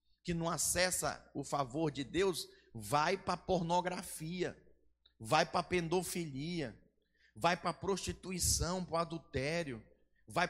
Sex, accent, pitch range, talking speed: male, Brazilian, 145-220 Hz, 125 wpm